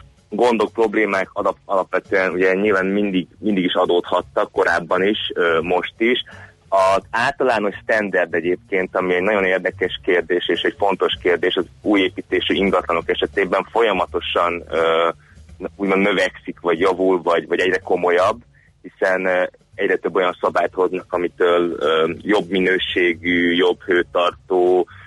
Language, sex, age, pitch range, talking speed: Hungarian, male, 30-49, 90-110 Hz, 120 wpm